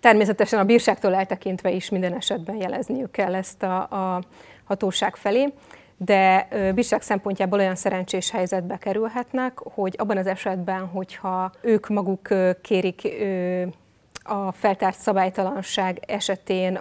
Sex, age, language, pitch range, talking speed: female, 30-49, Hungarian, 190-215 Hz, 115 wpm